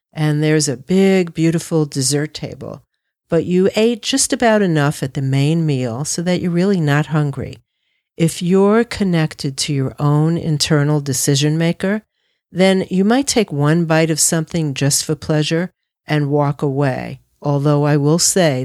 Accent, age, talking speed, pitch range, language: American, 50-69, 160 wpm, 140-185 Hz, English